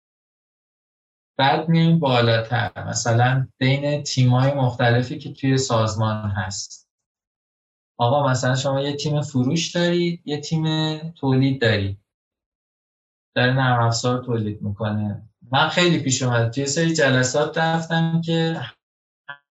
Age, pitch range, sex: 20-39, 120-150 Hz, male